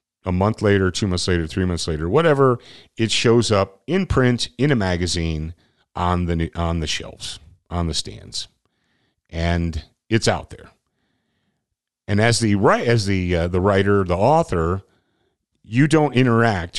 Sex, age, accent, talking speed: male, 40-59, American, 155 wpm